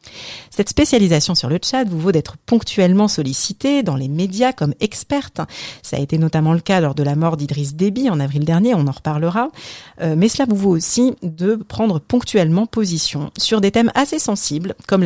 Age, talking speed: 30-49, 190 wpm